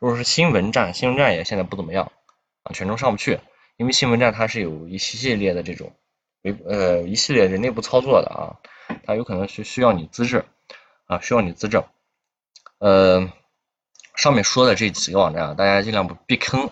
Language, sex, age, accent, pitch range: Chinese, male, 20-39, native, 90-120 Hz